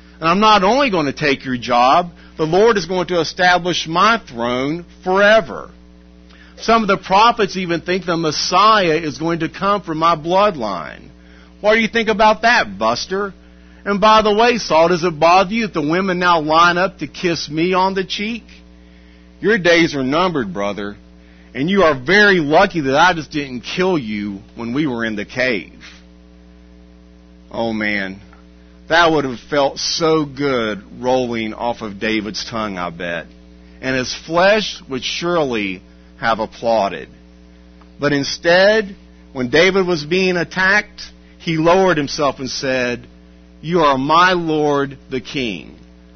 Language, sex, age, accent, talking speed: English, male, 50-69, American, 160 wpm